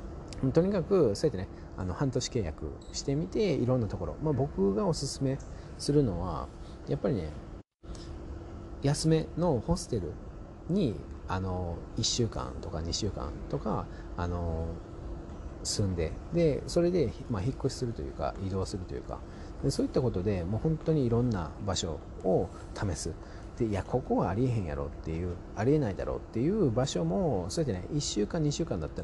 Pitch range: 85-135 Hz